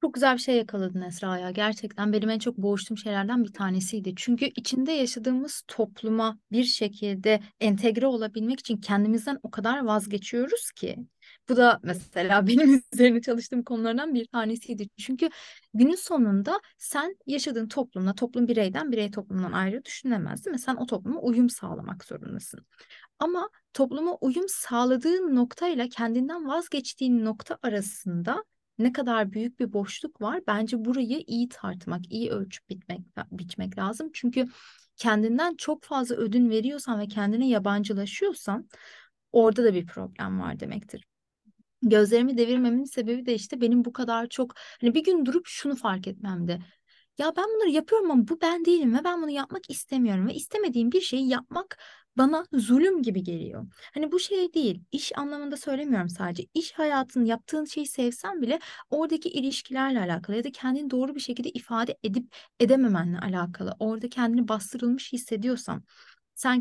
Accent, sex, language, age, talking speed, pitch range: native, female, Turkish, 30-49, 150 wpm, 215-275 Hz